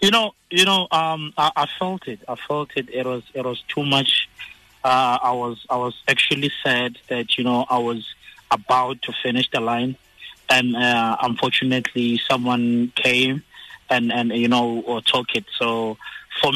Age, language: 20-39, English